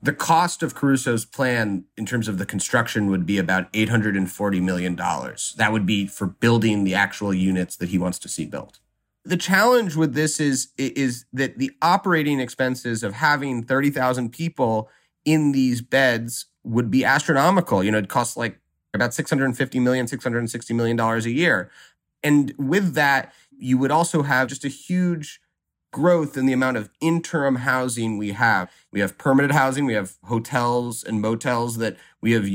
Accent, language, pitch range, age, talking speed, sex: American, English, 105-135 Hz, 30-49, 170 wpm, male